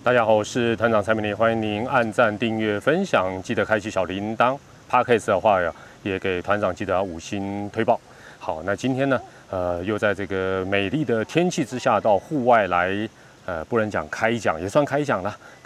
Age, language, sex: 30-49, Chinese, male